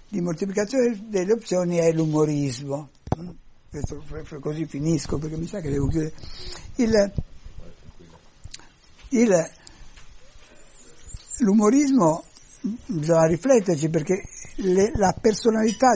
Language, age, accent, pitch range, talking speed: Italian, 60-79, native, 165-235 Hz, 95 wpm